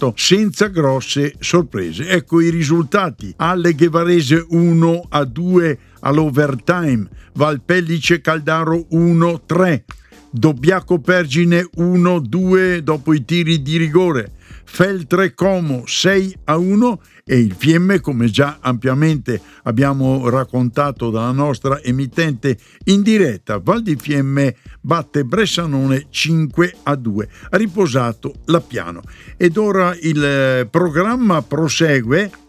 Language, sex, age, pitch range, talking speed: Italian, male, 60-79, 130-175 Hz, 105 wpm